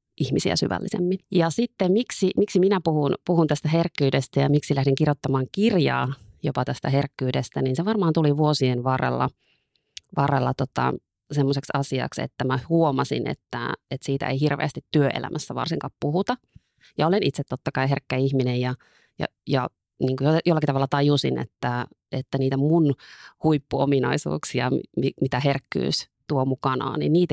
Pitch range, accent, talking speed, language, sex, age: 135-160 Hz, native, 140 wpm, Finnish, female, 30-49